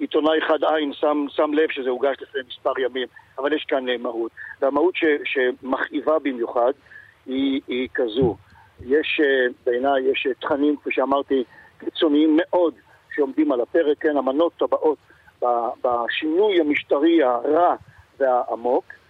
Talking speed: 125 wpm